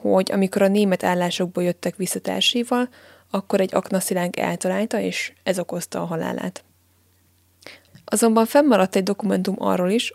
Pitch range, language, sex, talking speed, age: 180-220 Hz, Hungarian, female, 130 wpm, 20-39